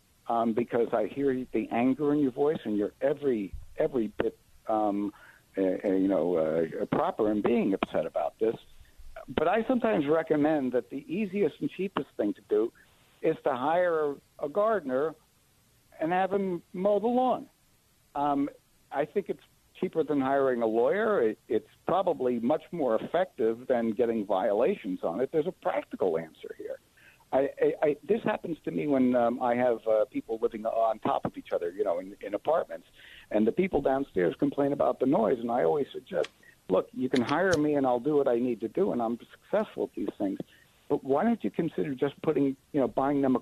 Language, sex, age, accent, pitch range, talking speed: English, male, 60-79, American, 125-205 Hz, 195 wpm